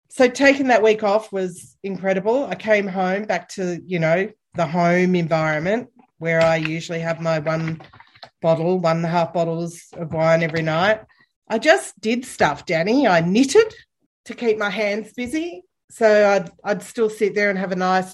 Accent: Australian